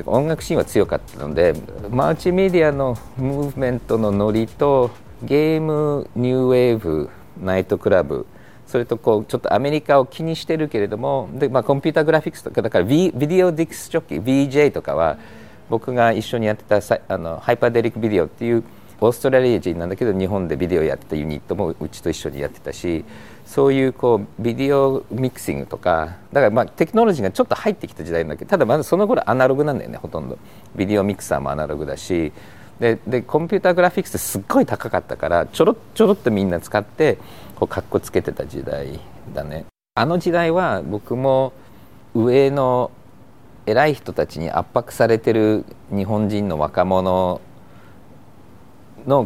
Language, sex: Japanese, male